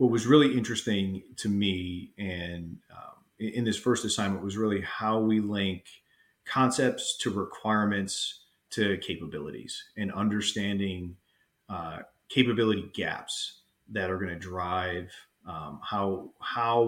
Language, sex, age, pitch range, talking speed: English, male, 30-49, 95-110 Hz, 120 wpm